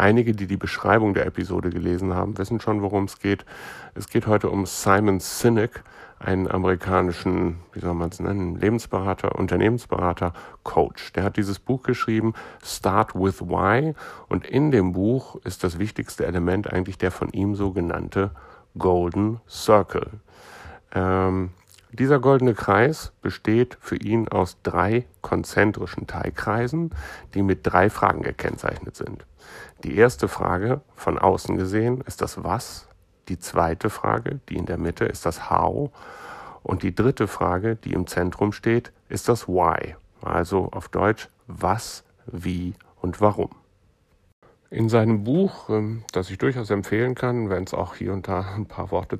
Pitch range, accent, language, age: 90-115 Hz, German, German, 60-79